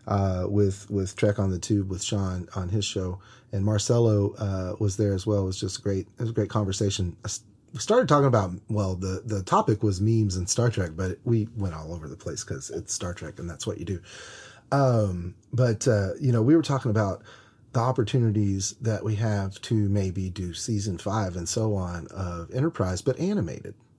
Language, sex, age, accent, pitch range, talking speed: English, male, 30-49, American, 100-125 Hz, 210 wpm